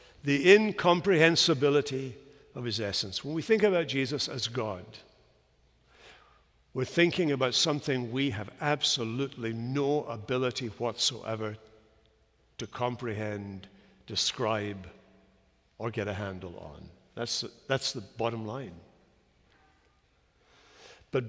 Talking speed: 105 wpm